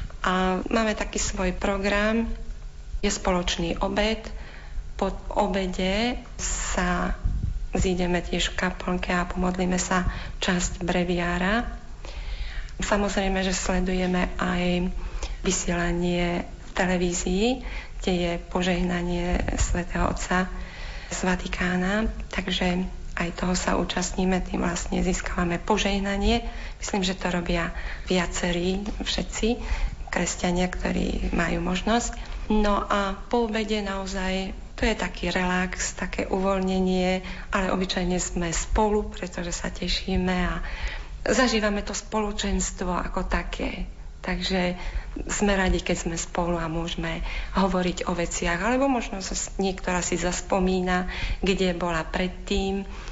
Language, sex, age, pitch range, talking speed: Slovak, female, 40-59, 180-205 Hz, 110 wpm